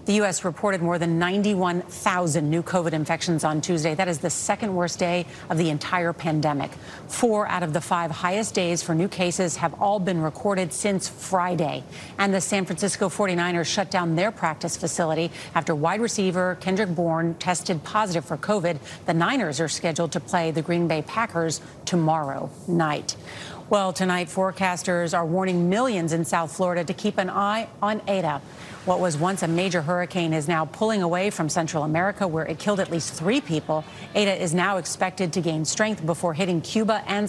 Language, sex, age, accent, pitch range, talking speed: English, female, 40-59, American, 165-200 Hz, 185 wpm